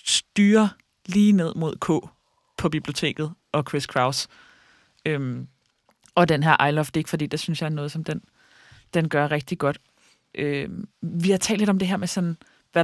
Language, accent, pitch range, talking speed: Danish, native, 145-175 Hz, 190 wpm